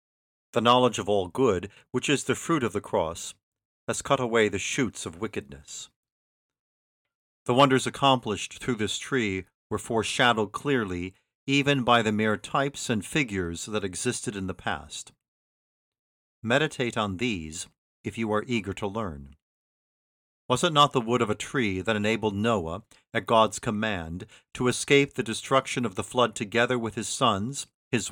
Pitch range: 105-125 Hz